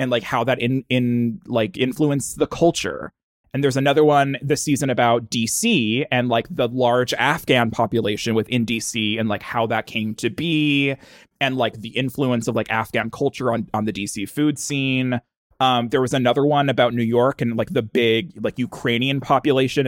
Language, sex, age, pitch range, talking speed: English, male, 20-39, 115-140 Hz, 185 wpm